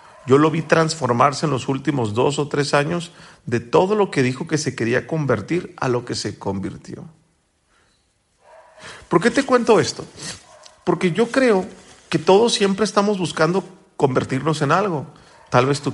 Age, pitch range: 40-59, 130-175 Hz